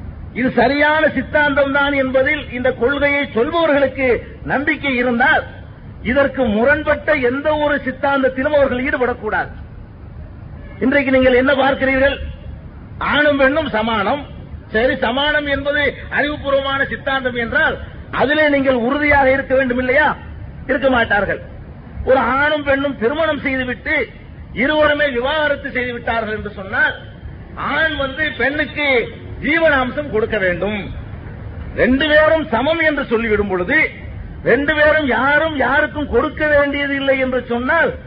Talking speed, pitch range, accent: 105 wpm, 250-295 Hz, native